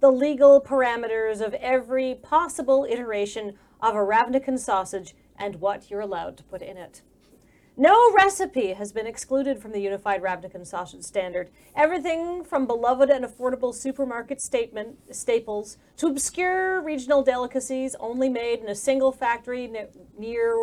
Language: English